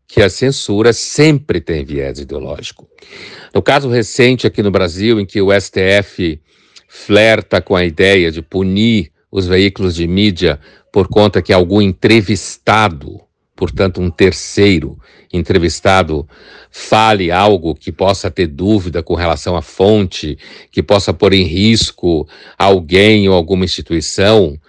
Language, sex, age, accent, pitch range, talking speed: Portuguese, male, 60-79, Brazilian, 90-110 Hz, 135 wpm